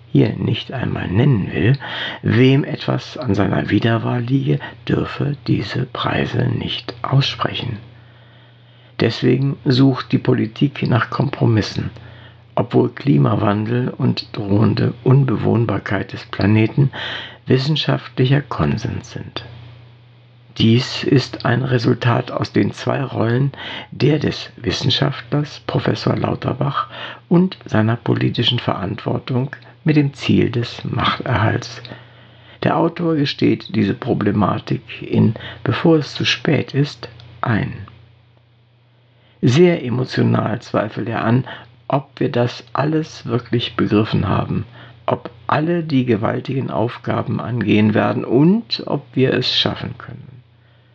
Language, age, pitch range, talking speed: German, 60-79, 115-130 Hz, 105 wpm